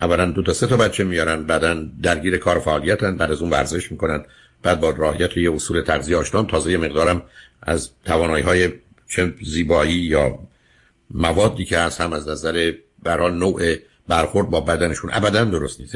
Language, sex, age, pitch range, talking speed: Persian, male, 60-79, 80-95 Hz, 175 wpm